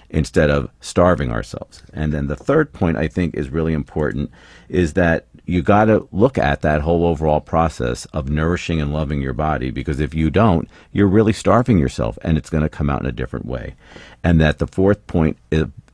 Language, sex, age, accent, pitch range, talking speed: English, male, 50-69, American, 75-90 Hz, 200 wpm